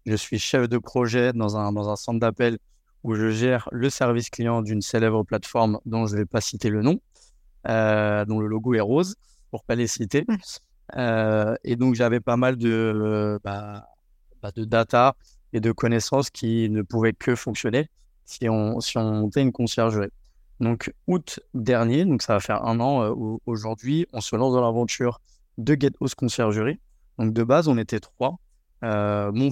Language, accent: French, French